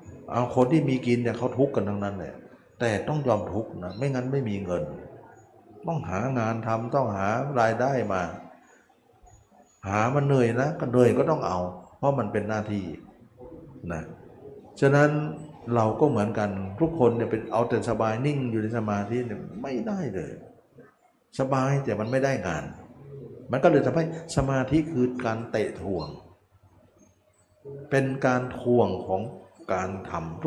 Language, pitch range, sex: Thai, 100-130 Hz, male